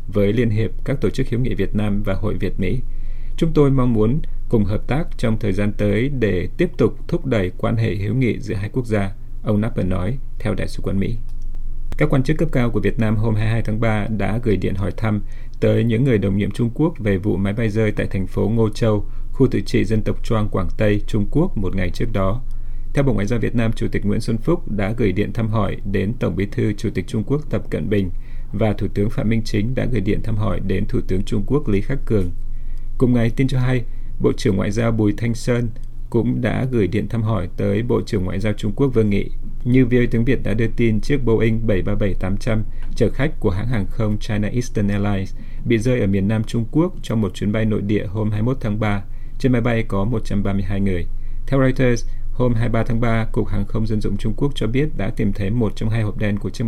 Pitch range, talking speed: 105-120 Hz, 250 wpm